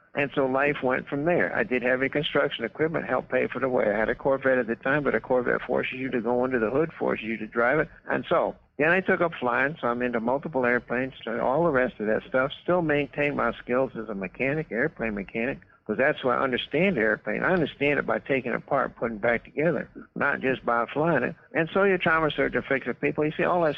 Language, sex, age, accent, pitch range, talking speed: English, male, 60-79, American, 125-155 Hz, 245 wpm